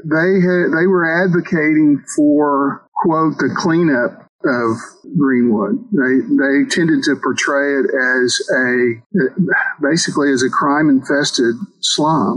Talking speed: 120 wpm